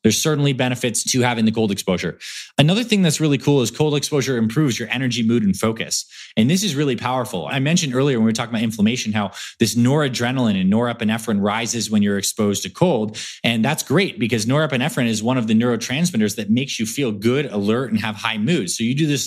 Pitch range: 115-165 Hz